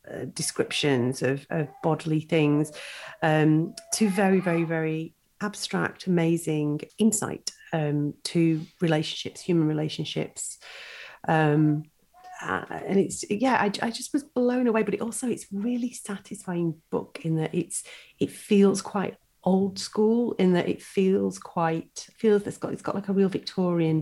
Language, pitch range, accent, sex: English, 155-210 Hz, British, female